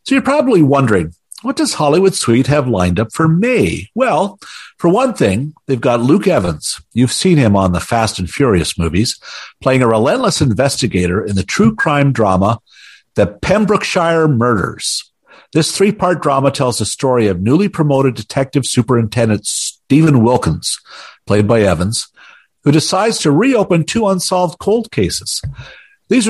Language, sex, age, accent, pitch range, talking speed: English, male, 50-69, American, 115-170 Hz, 155 wpm